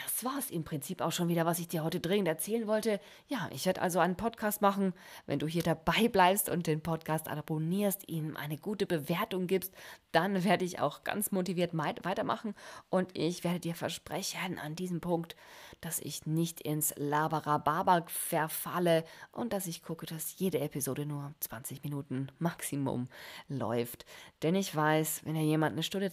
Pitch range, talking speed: 150-185 Hz, 175 wpm